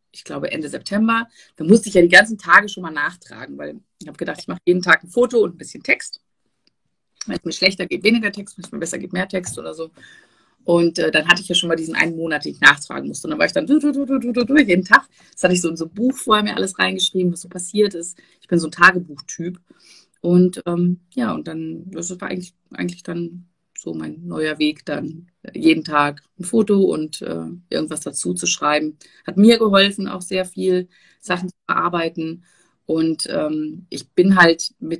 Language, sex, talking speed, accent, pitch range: German, female, 230 wpm, German, 165-200 Hz